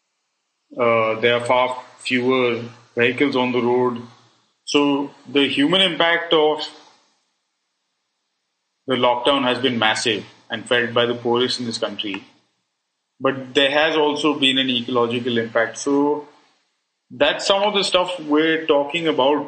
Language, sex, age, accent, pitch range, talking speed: English, male, 30-49, Indian, 125-155 Hz, 135 wpm